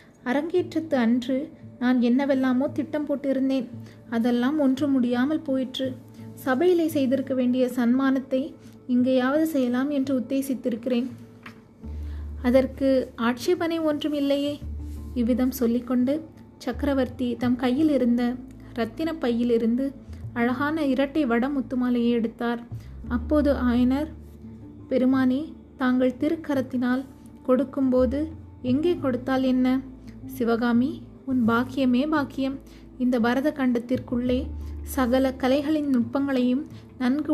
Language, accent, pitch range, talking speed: Tamil, native, 245-280 Hz, 90 wpm